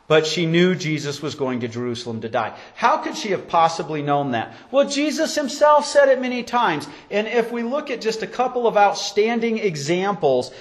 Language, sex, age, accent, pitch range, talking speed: English, male, 40-59, American, 155-230 Hz, 200 wpm